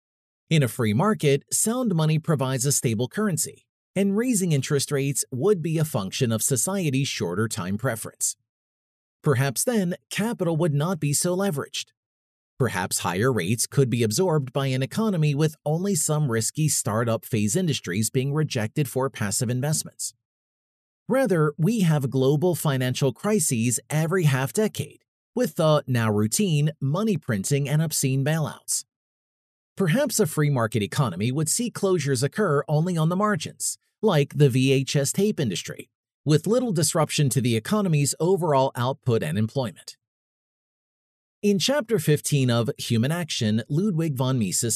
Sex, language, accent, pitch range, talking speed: male, English, American, 130-170 Hz, 140 wpm